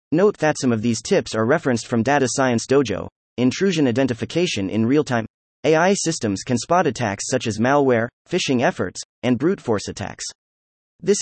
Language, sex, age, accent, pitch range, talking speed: English, male, 30-49, American, 105-155 Hz, 165 wpm